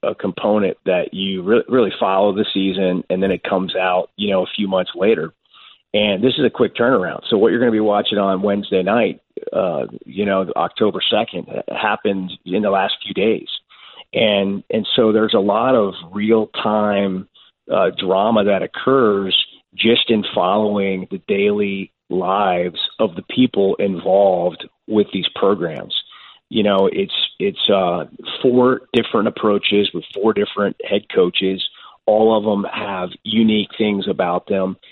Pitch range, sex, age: 100-110 Hz, male, 30-49